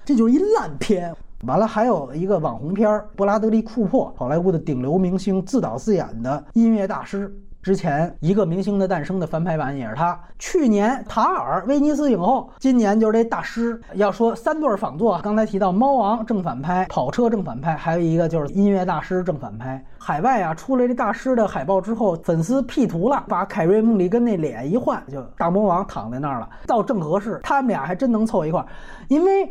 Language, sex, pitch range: Chinese, male, 165-230 Hz